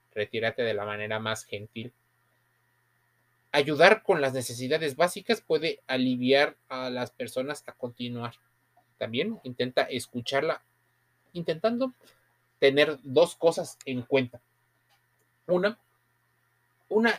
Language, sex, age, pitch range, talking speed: Spanish, male, 30-49, 120-170 Hz, 100 wpm